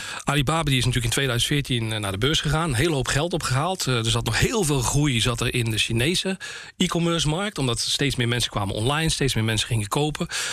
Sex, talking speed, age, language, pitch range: male, 215 wpm, 40-59, Dutch, 115-150 Hz